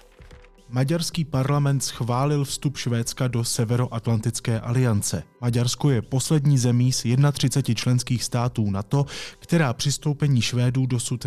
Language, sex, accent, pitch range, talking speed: Czech, male, native, 120-140 Hz, 115 wpm